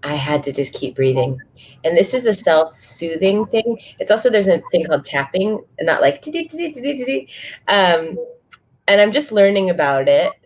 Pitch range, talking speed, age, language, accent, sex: 150-210 Hz, 160 wpm, 20-39, English, American, female